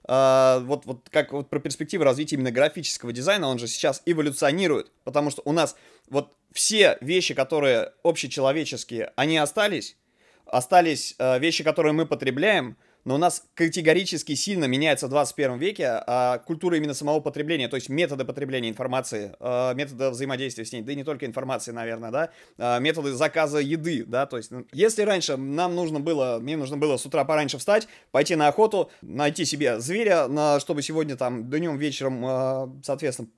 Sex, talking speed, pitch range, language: male, 165 wpm, 130-160 Hz, Russian